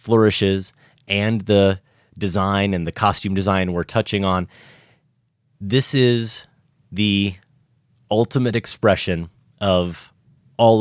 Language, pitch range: English, 95-125 Hz